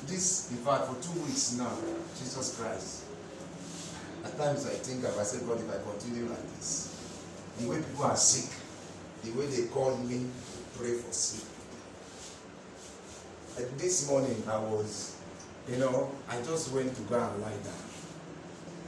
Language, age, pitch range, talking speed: English, 40-59, 105-135 Hz, 160 wpm